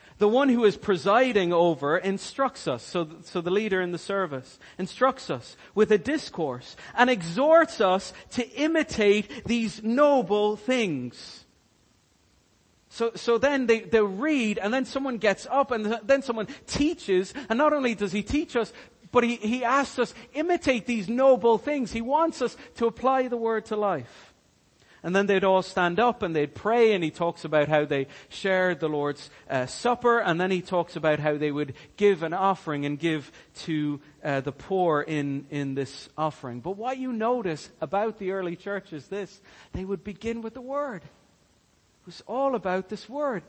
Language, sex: English, male